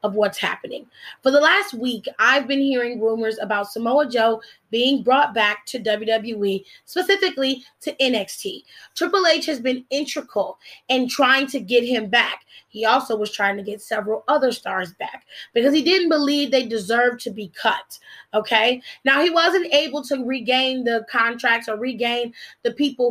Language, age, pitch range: English, 20-39, 230-280 Hz